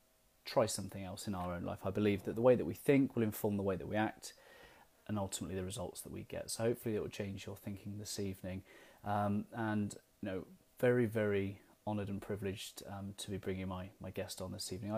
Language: English